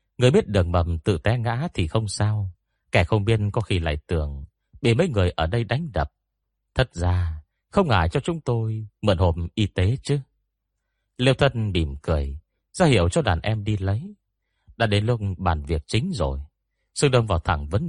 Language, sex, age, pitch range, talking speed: Vietnamese, male, 30-49, 85-115 Hz, 200 wpm